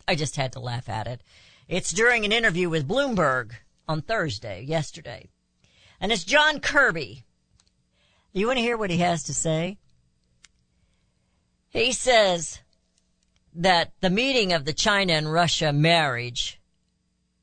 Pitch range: 135-195 Hz